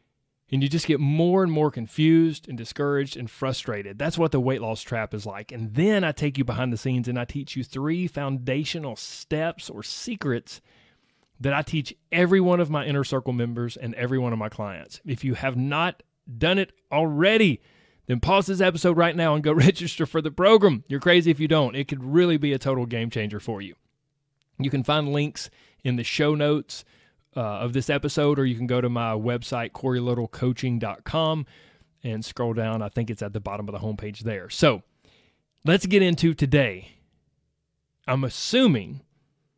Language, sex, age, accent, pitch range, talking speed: English, male, 30-49, American, 120-155 Hz, 195 wpm